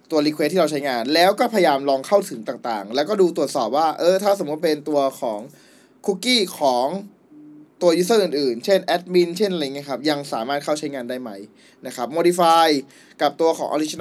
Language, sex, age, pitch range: Thai, male, 20-39, 140-190 Hz